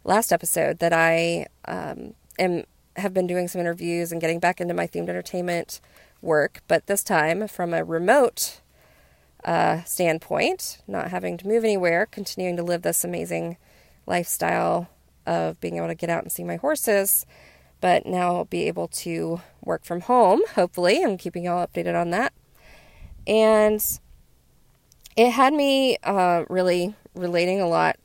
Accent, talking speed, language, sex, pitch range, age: American, 155 wpm, English, female, 145-180 Hz, 30-49